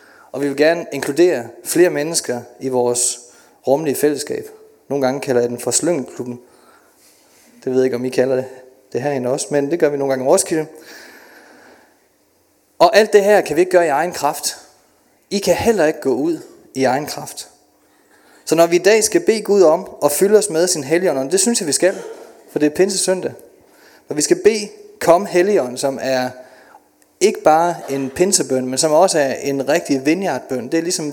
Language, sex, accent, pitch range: Danish, male, native, 135-185 Hz